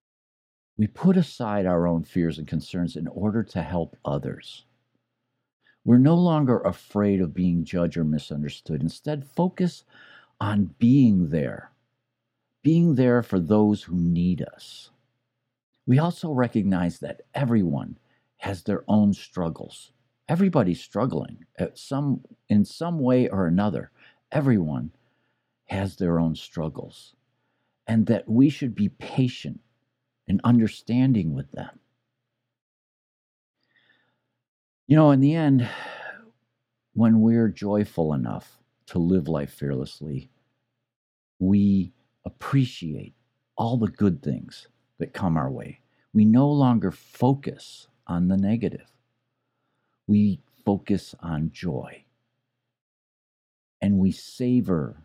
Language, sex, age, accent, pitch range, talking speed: English, male, 60-79, American, 90-125 Hz, 110 wpm